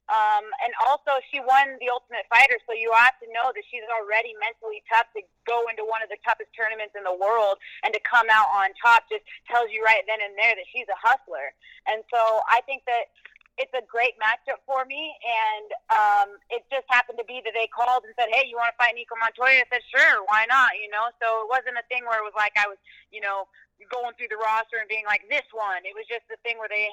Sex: female